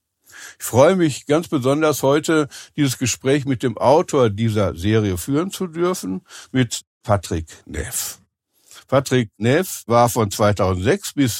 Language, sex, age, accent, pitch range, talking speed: German, male, 60-79, German, 105-135 Hz, 130 wpm